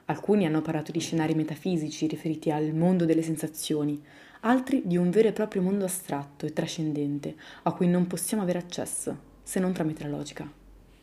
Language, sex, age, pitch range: Italian, female, 20-39, 160-200 Hz